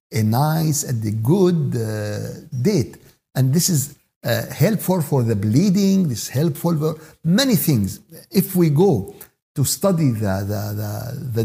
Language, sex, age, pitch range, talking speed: Arabic, male, 60-79, 120-170 Hz, 150 wpm